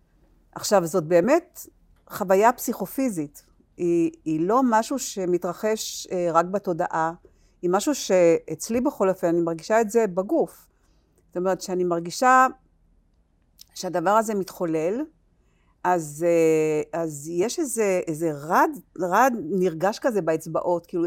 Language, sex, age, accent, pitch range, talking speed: Hebrew, female, 50-69, native, 175-240 Hz, 115 wpm